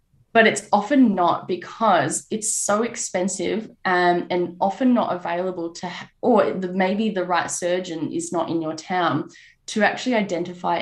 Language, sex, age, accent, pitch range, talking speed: English, female, 10-29, Australian, 170-215 Hz, 150 wpm